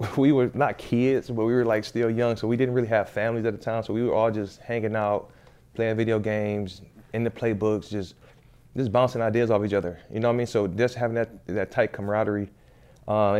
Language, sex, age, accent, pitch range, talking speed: English, male, 20-39, American, 100-115 Hz, 235 wpm